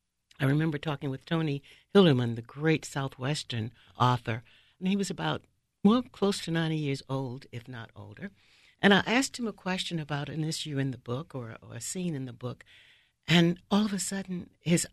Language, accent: English, American